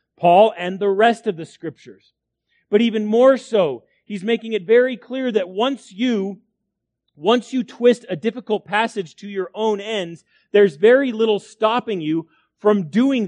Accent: American